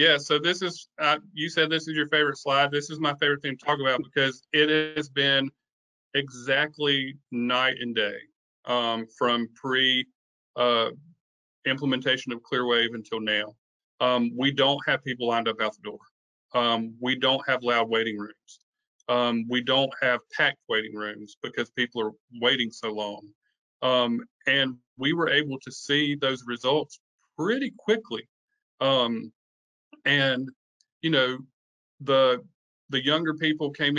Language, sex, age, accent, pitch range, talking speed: English, male, 40-59, American, 125-150 Hz, 150 wpm